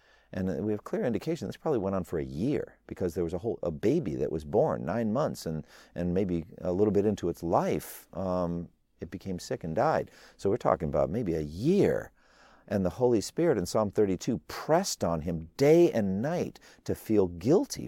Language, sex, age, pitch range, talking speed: English, male, 50-69, 75-105 Hz, 210 wpm